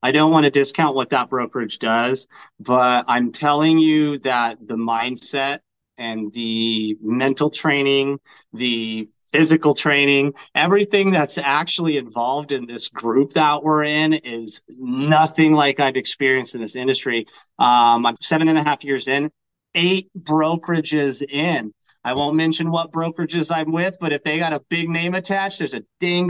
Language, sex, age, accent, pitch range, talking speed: English, male, 30-49, American, 120-160 Hz, 160 wpm